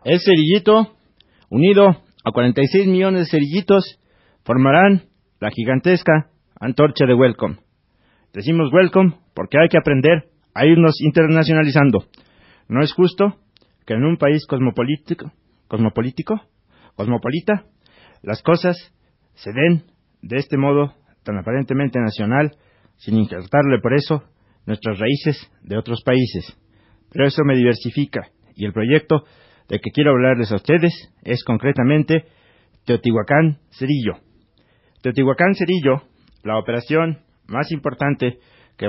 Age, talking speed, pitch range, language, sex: 40-59, 115 wpm, 110-165 Hz, Spanish, male